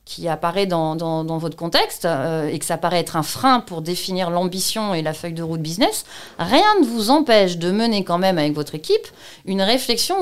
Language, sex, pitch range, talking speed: French, female, 175-235 Hz, 210 wpm